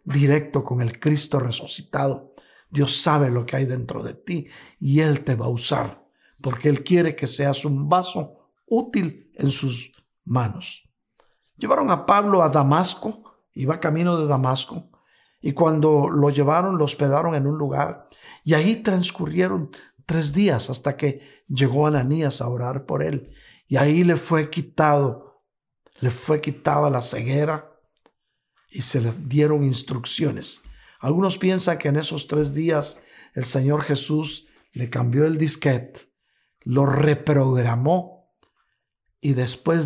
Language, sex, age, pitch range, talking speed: Spanish, male, 60-79, 135-160 Hz, 140 wpm